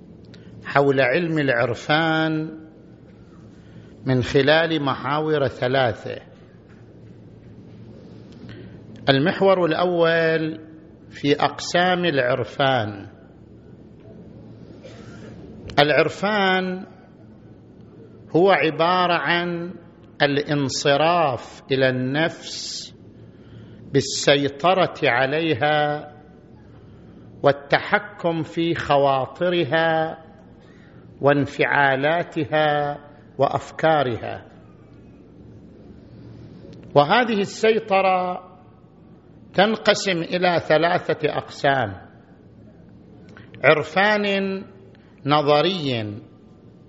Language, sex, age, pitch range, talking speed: Arabic, male, 50-69, 135-180 Hz, 45 wpm